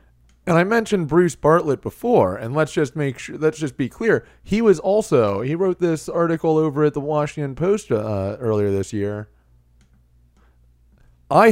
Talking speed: 165 wpm